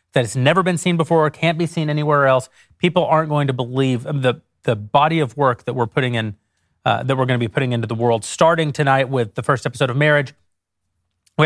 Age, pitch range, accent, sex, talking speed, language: 30-49, 115-150 Hz, American, male, 235 wpm, English